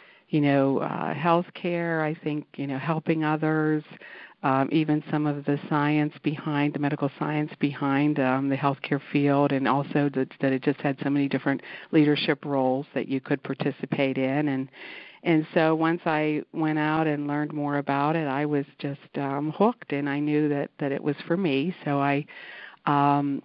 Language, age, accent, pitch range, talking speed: English, 50-69, American, 140-155 Hz, 180 wpm